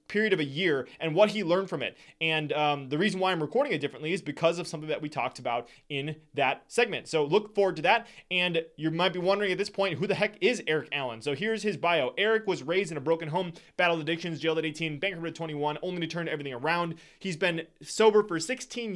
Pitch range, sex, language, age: 155-185 Hz, male, English, 20-39